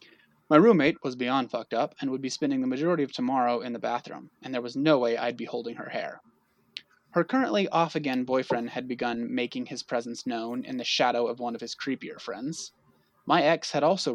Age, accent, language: 20-39, American, English